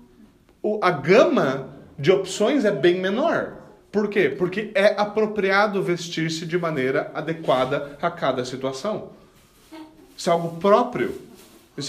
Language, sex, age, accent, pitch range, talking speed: Portuguese, male, 30-49, Brazilian, 160-210 Hz, 125 wpm